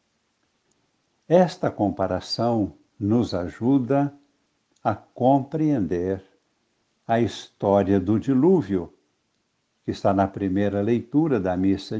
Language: Portuguese